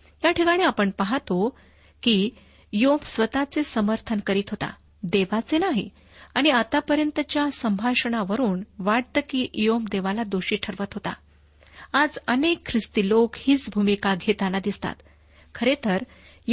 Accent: native